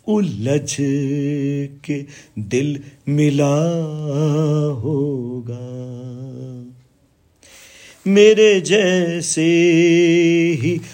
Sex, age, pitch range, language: male, 40-59, 125-170 Hz, Hindi